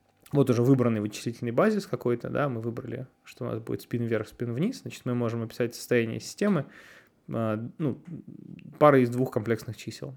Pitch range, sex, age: 115-140 Hz, male, 20-39